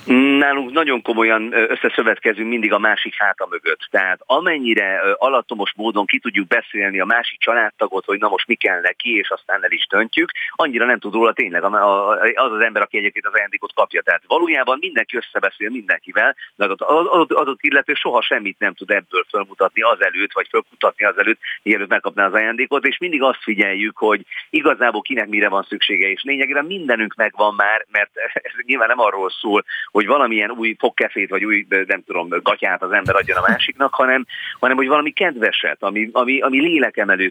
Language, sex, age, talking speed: Hungarian, male, 40-59, 185 wpm